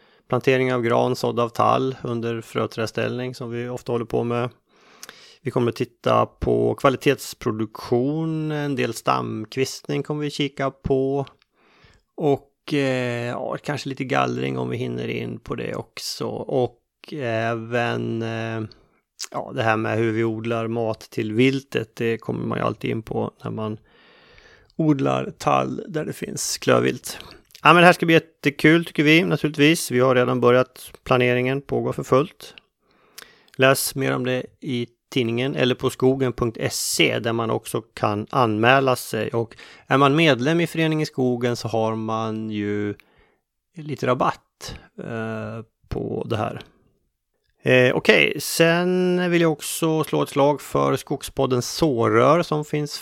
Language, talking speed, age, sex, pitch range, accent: Swedish, 150 wpm, 30-49, male, 115-140 Hz, native